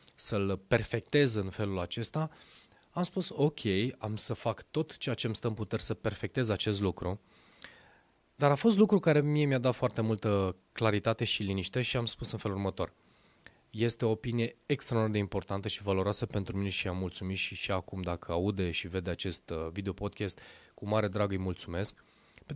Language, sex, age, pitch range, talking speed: Romanian, male, 20-39, 100-135 Hz, 180 wpm